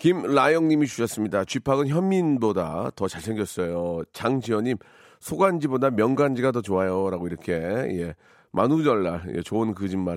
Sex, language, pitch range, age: male, Korean, 105-140 Hz, 40-59